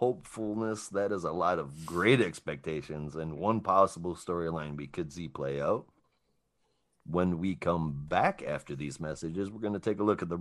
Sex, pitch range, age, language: male, 85-110 Hz, 40-59, English